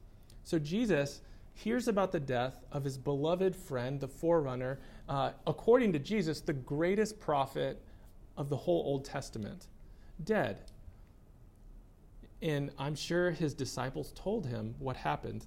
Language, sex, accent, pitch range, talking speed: English, male, American, 115-150 Hz, 130 wpm